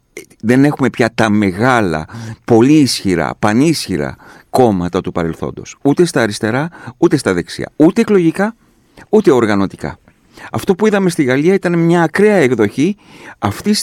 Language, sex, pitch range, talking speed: Greek, male, 105-155 Hz, 135 wpm